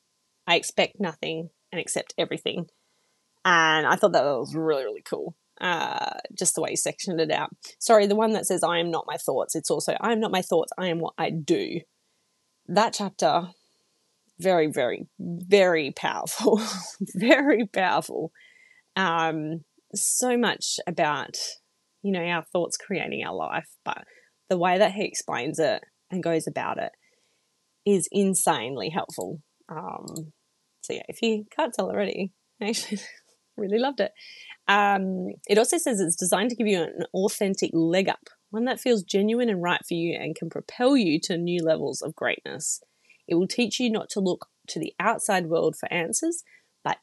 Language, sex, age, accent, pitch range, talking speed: English, female, 20-39, Australian, 170-225 Hz, 165 wpm